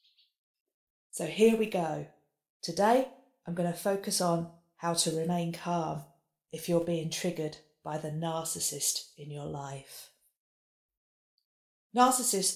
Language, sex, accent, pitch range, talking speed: English, female, British, 155-180 Hz, 120 wpm